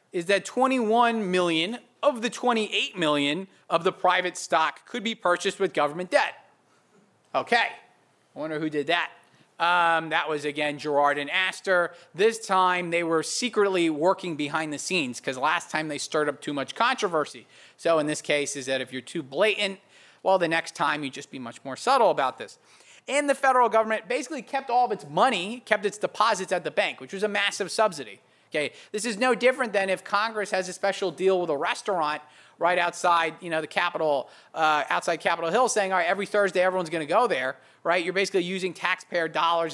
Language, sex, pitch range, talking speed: English, male, 155-205 Hz, 200 wpm